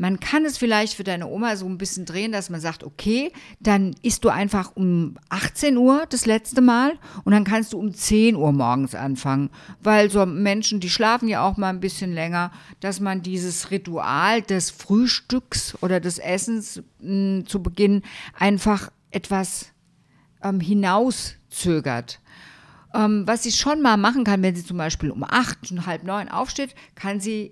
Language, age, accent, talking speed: German, 50-69, German, 175 wpm